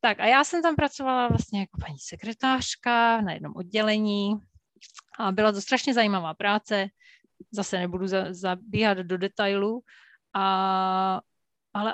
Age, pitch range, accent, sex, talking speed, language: 30-49, 190-225 Hz, native, female, 130 wpm, Czech